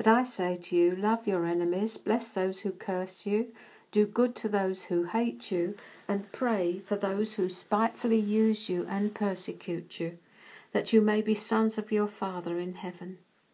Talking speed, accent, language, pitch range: 180 wpm, British, English, 180-220 Hz